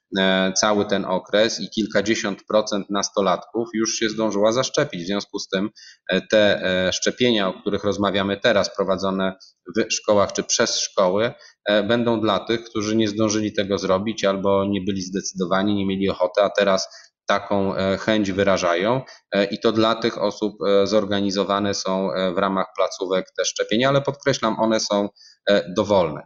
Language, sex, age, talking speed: Polish, male, 20-39, 145 wpm